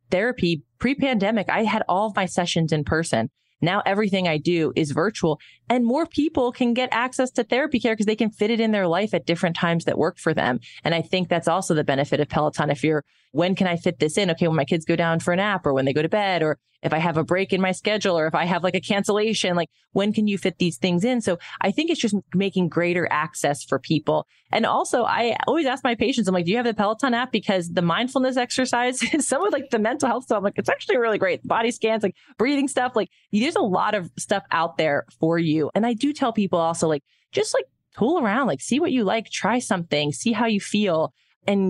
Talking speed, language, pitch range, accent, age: 255 wpm, English, 160-225 Hz, American, 20-39